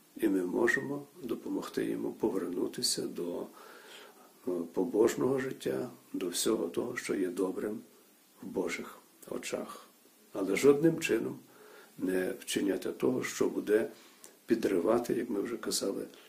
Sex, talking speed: male, 115 wpm